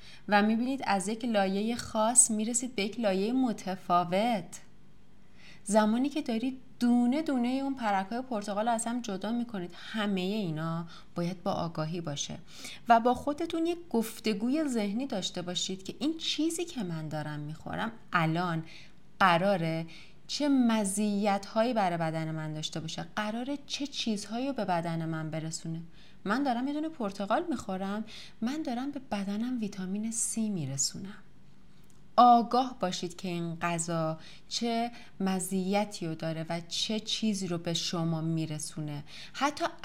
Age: 30-49